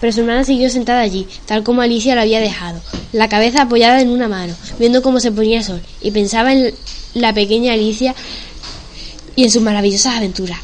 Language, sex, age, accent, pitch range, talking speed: Spanish, female, 10-29, Spanish, 205-240 Hz, 195 wpm